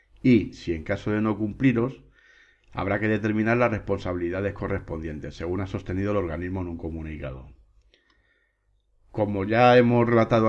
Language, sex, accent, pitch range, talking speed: Spanish, male, Spanish, 90-110 Hz, 145 wpm